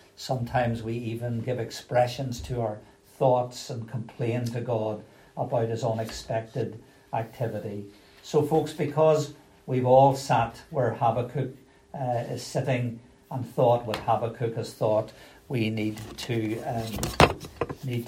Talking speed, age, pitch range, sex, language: 125 wpm, 60-79, 115-135 Hz, male, English